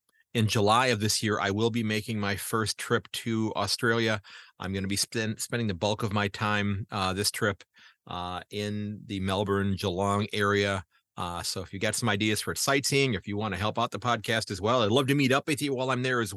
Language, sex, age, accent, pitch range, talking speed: English, male, 40-59, American, 100-120 Hz, 230 wpm